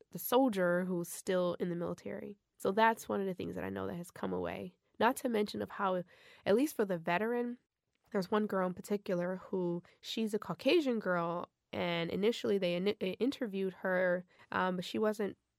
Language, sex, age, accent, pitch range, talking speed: English, female, 20-39, American, 175-215 Hz, 195 wpm